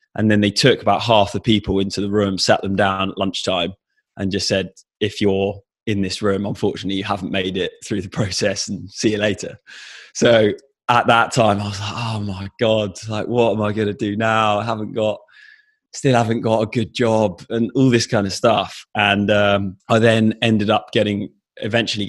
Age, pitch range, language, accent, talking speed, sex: 20-39, 100-115 Hz, English, British, 210 wpm, male